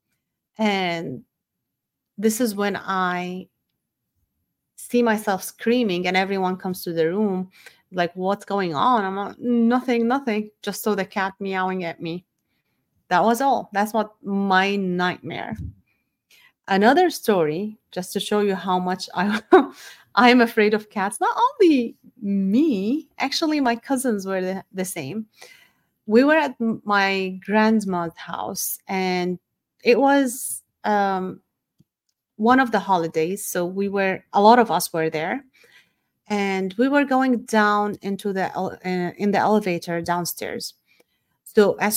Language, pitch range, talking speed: English, 190-245 Hz, 135 wpm